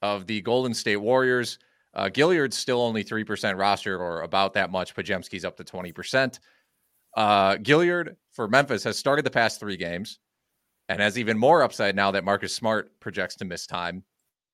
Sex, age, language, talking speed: male, 30-49, English, 175 wpm